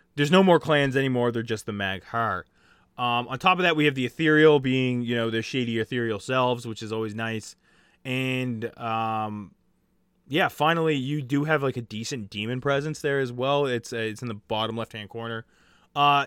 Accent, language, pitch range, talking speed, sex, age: American, English, 115-155 Hz, 190 wpm, male, 20-39